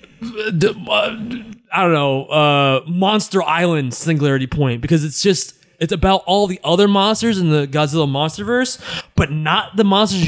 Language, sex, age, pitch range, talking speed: English, male, 20-39, 135-185 Hz, 150 wpm